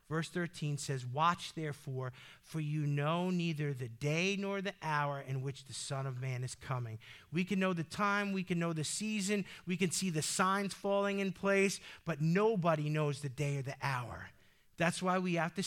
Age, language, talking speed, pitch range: 50-69, English, 205 wpm, 155-215 Hz